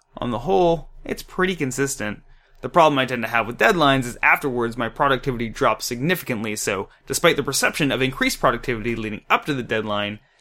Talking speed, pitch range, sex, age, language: 185 wpm, 125-160 Hz, male, 20-39, English